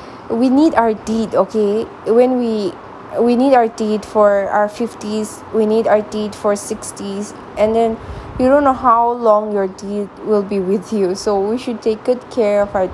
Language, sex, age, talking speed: English, female, 20-39, 190 wpm